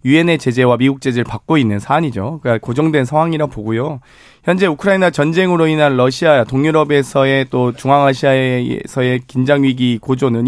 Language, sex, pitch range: Korean, male, 125-160 Hz